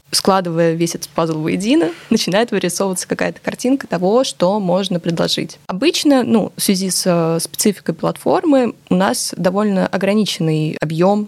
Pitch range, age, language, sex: 165-205 Hz, 20-39, Russian, female